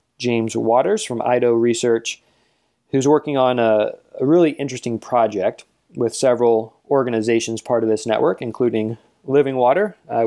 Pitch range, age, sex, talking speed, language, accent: 115-135 Hz, 20-39, male, 140 wpm, English, American